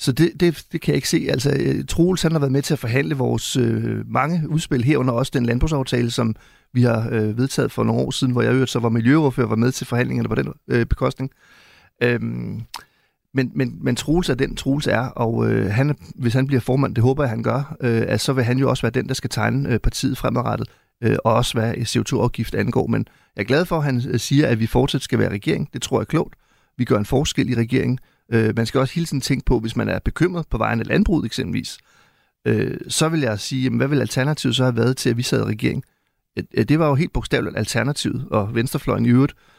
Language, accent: Danish, native